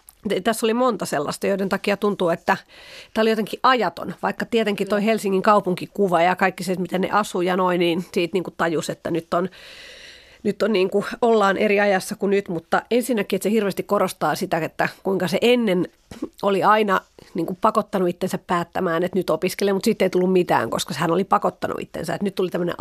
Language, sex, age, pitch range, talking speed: Finnish, female, 30-49, 180-220 Hz, 200 wpm